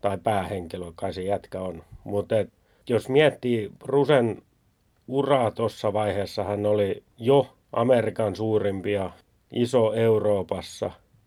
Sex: male